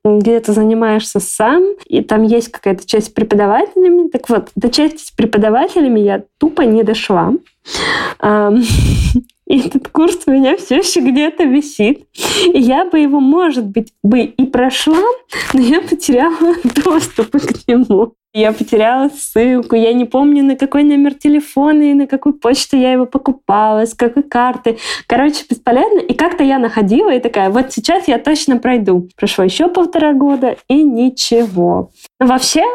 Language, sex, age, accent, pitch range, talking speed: Russian, female, 20-39, native, 225-295 Hz, 155 wpm